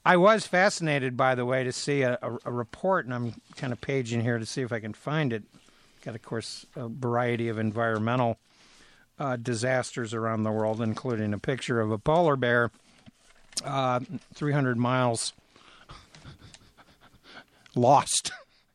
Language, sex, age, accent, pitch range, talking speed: English, male, 60-79, American, 120-150 Hz, 150 wpm